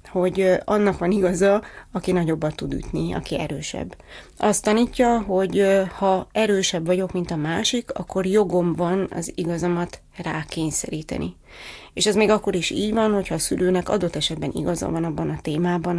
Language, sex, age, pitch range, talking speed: Hungarian, female, 30-49, 170-195 Hz, 160 wpm